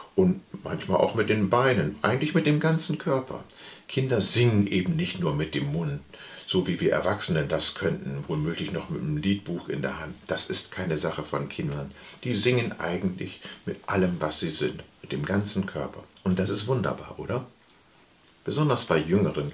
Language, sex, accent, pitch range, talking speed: German, male, German, 75-120 Hz, 180 wpm